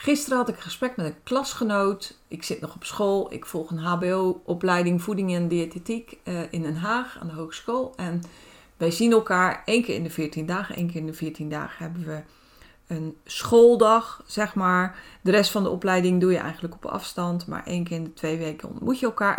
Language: Dutch